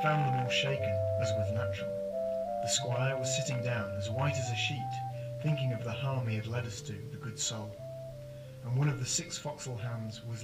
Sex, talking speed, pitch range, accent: male, 215 wpm, 110-135 Hz, British